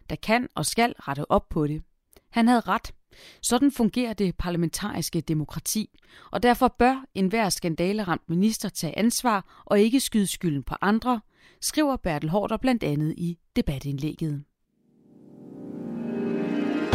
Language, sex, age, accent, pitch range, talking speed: Danish, female, 30-49, native, 165-230 Hz, 130 wpm